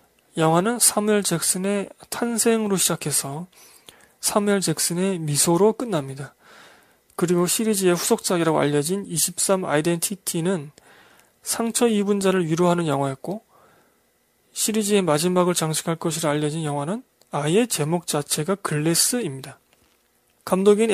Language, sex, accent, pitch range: Korean, male, native, 160-210 Hz